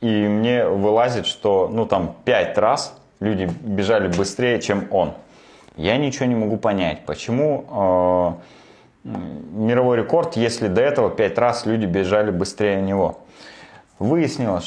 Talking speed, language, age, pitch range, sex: 125 wpm, Russian, 30-49, 90-115 Hz, male